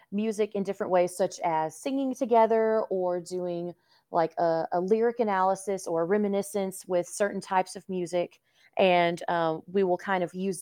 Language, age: English, 30-49